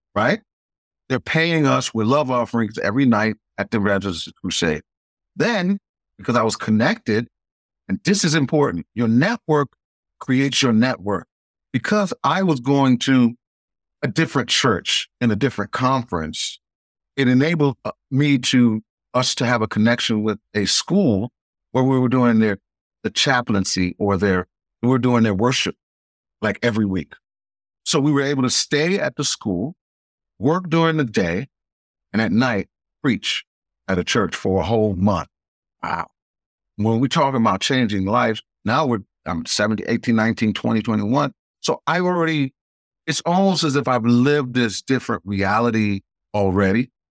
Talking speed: 155 wpm